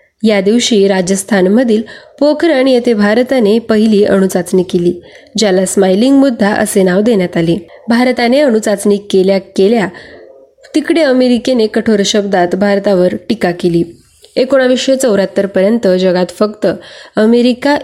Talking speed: 110 wpm